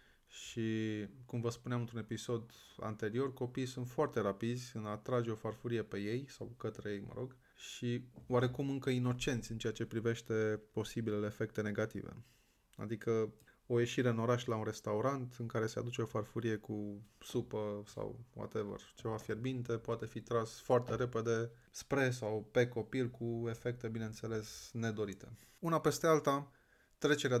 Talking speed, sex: 155 wpm, male